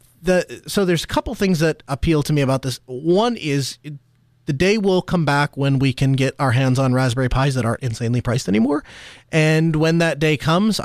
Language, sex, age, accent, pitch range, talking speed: English, male, 30-49, American, 125-165 Hz, 215 wpm